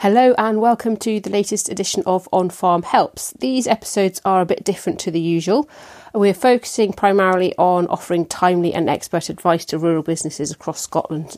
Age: 30-49